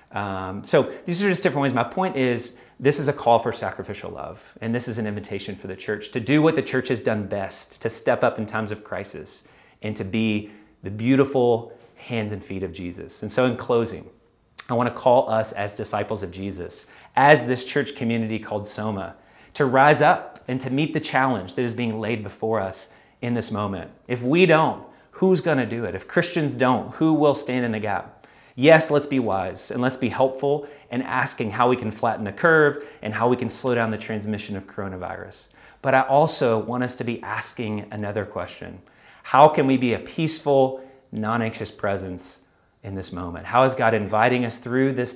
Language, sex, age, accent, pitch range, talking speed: English, male, 30-49, American, 105-130 Hz, 205 wpm